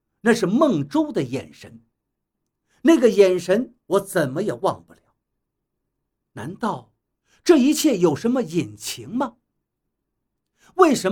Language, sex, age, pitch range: Chinese, male, 50-69, 180-280 Hz